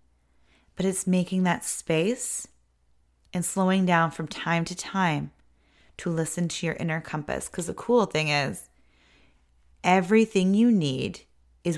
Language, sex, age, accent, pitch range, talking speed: English, female, 30-49, American, 150-180 Hz, 140 wpm